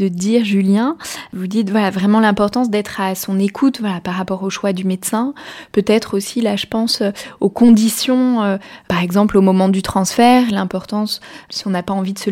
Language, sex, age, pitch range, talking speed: French, female, 20-39, 195-230 Hz, 200 wpm